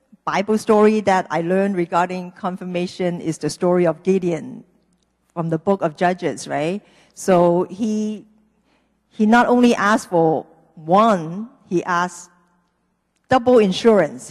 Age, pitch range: 50-69, 175-225 Hz